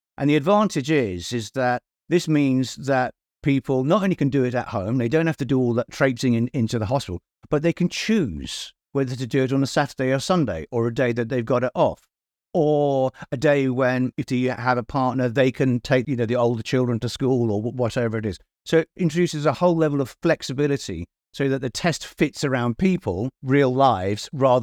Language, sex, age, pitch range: English, male, 50-69, 115-140 Hz